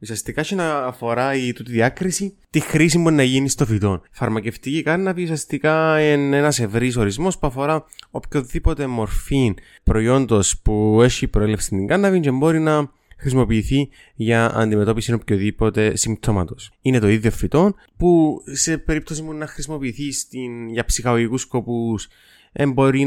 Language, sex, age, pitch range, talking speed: Greek, male, 20-39, 105-145 Hz, 140 wpm